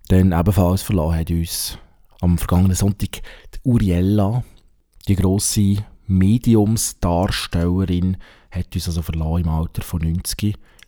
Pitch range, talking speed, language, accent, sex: 90-115 Hz, 115 wpm, German, Austrian, male